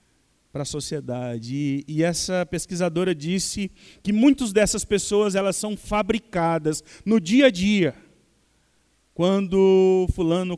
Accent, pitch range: Brazilian, 140-185 Hz